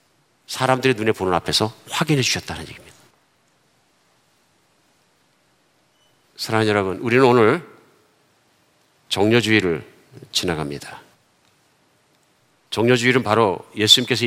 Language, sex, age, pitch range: Korean, male, 40-59, 95-140 Hz